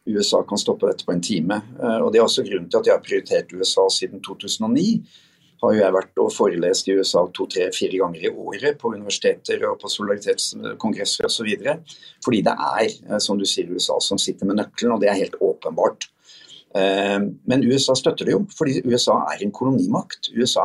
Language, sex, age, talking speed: English, male, 50-69, 200 wpm